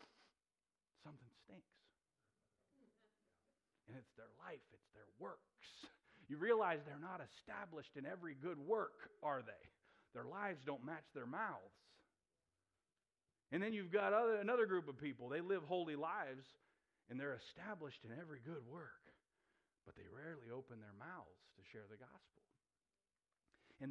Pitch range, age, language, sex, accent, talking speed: 145-230 Hz, 40-59, English, male, American, 145 wpm